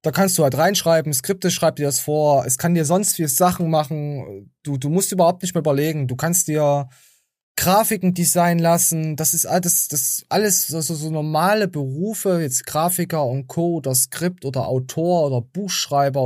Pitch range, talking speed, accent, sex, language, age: 140-180 Hz, 185 wpm, German, male, German, 20-39